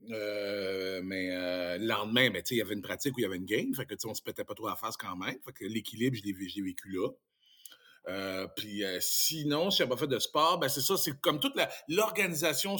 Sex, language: male, French